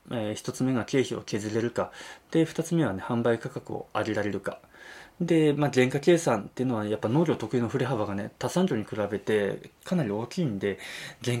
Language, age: Japanese, 20-39